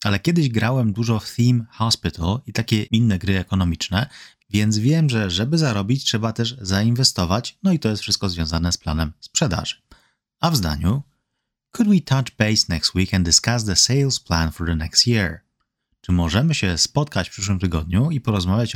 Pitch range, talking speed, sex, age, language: 90-120 Hz, 180 wpm, male, 30-49, Polish